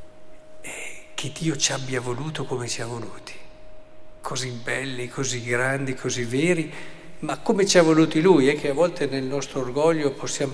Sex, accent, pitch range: male, native, 130-160 Hz